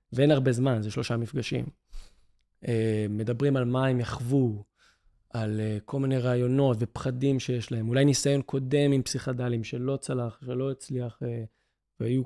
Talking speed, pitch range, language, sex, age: 150 wpm, 115-145 Hz, Hebrew, male, 20-39